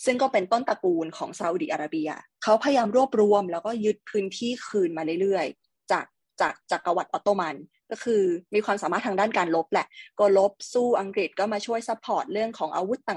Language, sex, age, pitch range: Thai, female, 20-39, 195-265 Hz